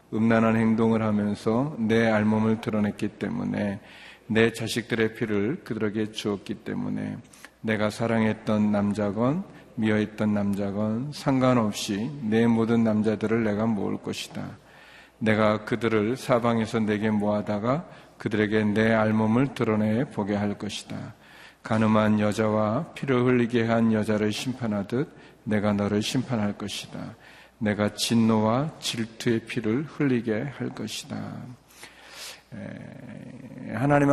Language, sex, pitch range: Korean, male, 105-125 Hz